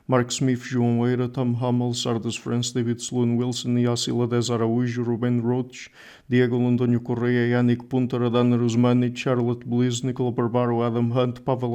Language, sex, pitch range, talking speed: English, male, 120-130 Hz, 155 wpm